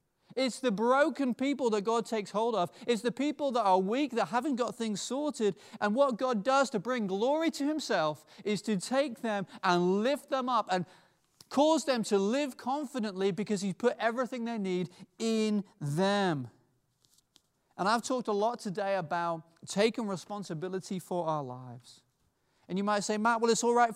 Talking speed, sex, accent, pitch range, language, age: 180 wpm, male, British, 175-245 Hz, English, 30-49